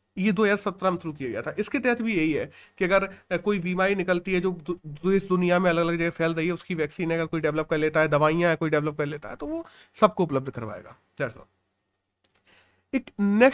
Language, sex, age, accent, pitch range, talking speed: Hindi, male, 30-49, native, 170-235 Hz, 110 wpm